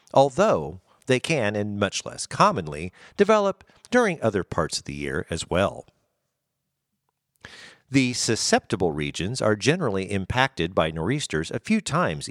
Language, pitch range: English, 95-140 Hz